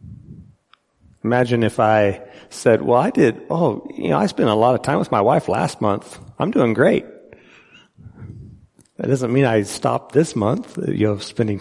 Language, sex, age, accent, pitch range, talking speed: English, male, 40-59, American, 105-125 Hz, 175 wpm